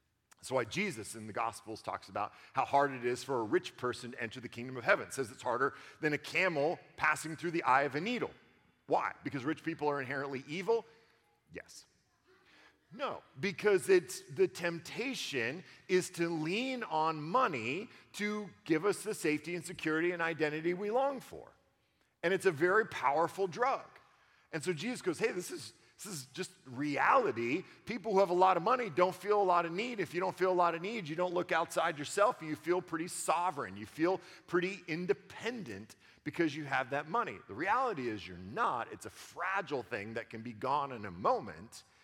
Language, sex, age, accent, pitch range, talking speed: English, male, 40-59, American, 140-195 Hz, 195 wpm